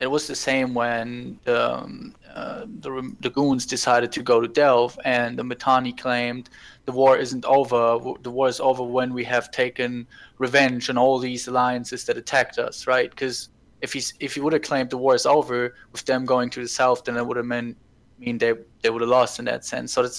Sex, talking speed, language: male, 230 wpm, English